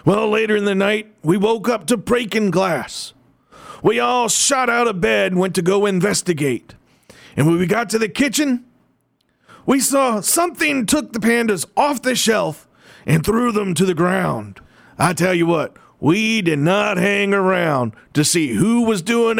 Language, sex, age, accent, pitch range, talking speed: English, male, 40-59, American, 165-225 Hz, 180 wpm